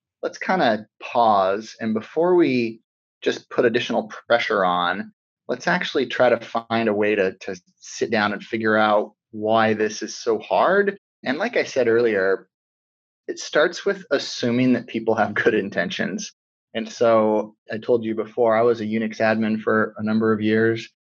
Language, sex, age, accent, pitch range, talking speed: English, male, 30-49, American, 105-115 Hz, 175 wpm